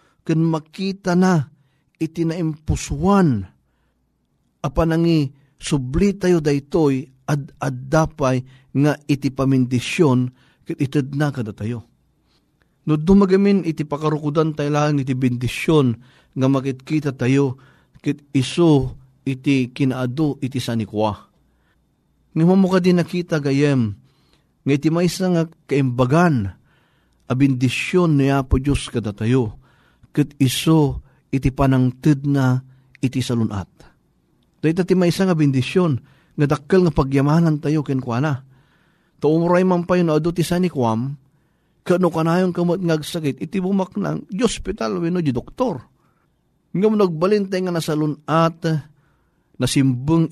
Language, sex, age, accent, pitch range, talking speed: Filipino, male, 50-69, native, 130-165 Hz, 115 wpm